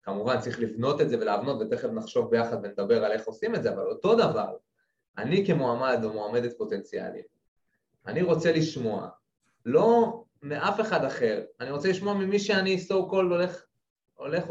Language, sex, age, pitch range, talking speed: Hebrew, male, 20-39, 135-205 Hz, 155 wpm